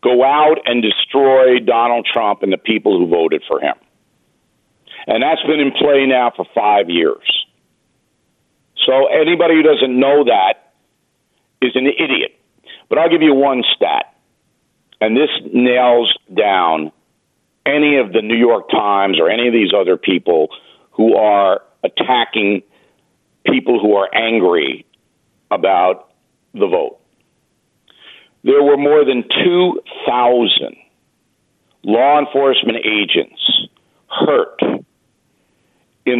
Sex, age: male, 50-69